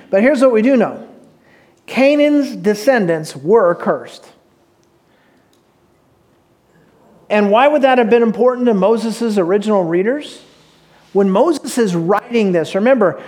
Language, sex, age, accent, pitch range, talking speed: English, male, 40-59, American, 190-250 Hz, 120 wpm